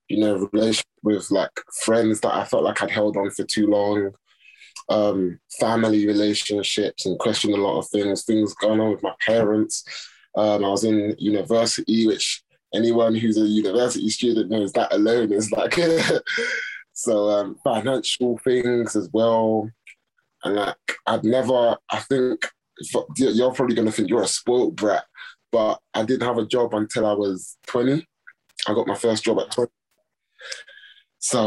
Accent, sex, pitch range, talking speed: British, male, 105-120 Hz, 165 wpm